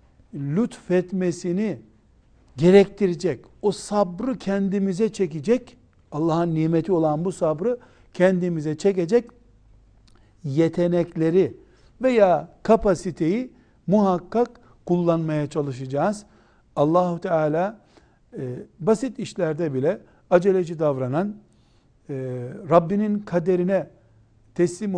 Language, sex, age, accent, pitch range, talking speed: Turkish, male, 60-79, native, 150-190 Hz, 75 wpm